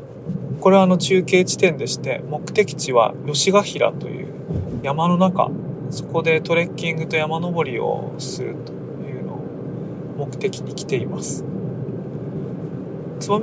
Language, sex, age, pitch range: Japanese, male, 20-39, 145-170 Hz